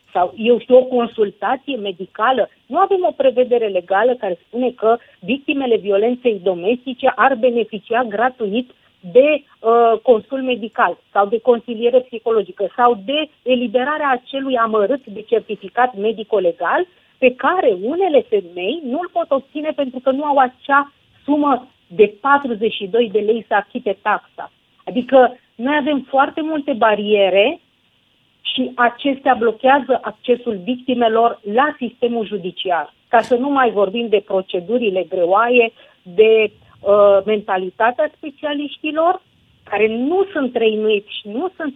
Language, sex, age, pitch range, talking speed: Romanian, female, 40-59, 210-265 Hz, 125 wpm